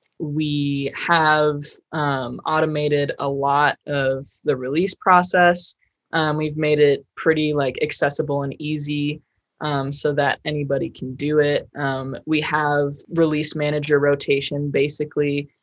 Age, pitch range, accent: 20-39, 140-155 Hz, American